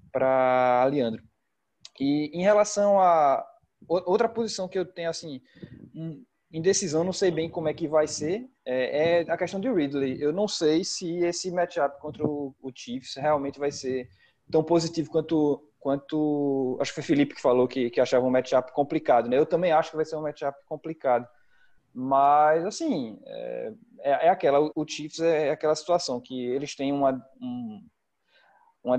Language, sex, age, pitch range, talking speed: Portuguese, male, 20-39, 130-165 Hz, 170 wpm